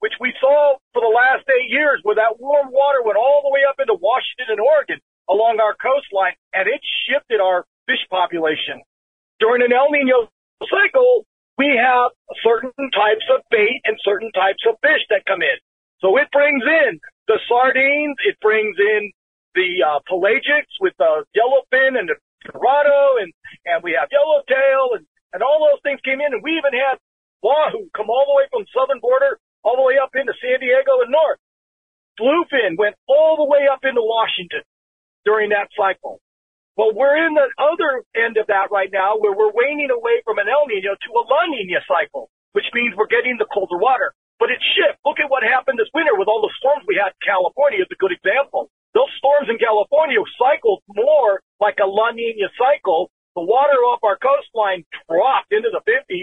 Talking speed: 195 wpm